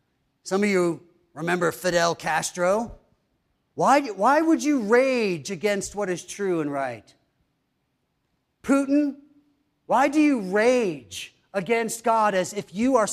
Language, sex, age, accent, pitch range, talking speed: English, male, 40-59, American, 165-230 Hz, 130 wpm